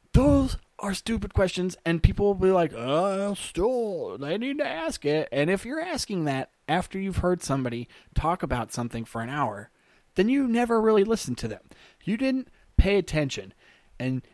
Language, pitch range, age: English, 120-180 Hz, 20-39